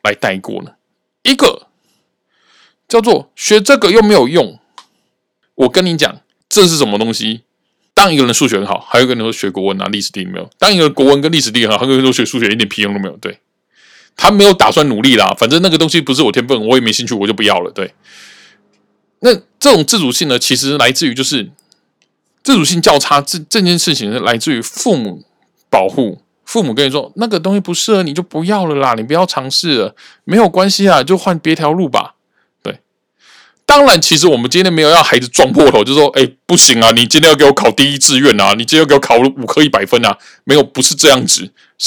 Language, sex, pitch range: Chinese, male, 130-185 Hz